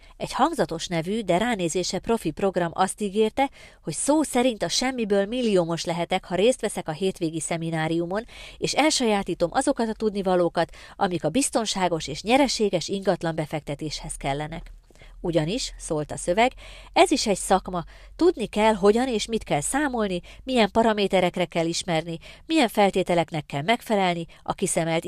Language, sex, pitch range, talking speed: Hungarian, female, 165-210 Hz, 145 wpm